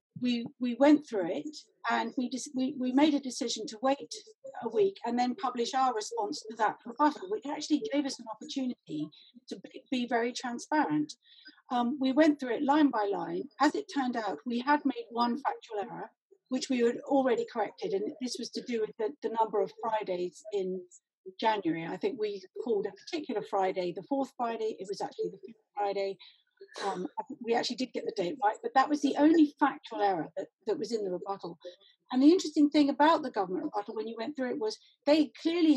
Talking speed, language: 205 wpm, English